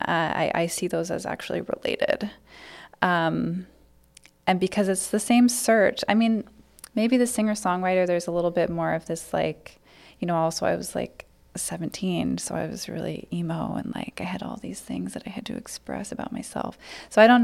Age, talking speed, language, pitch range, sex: 20-39, 195 wpm, English, 170-215 Hz, female